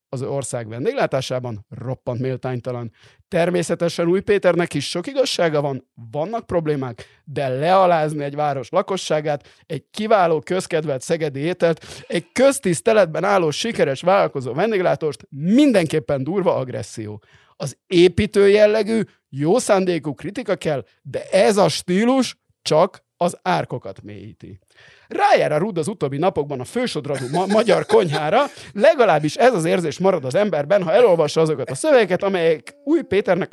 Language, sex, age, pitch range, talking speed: Hungarian, male, 50-69, 135-190 Hz, 130 wpm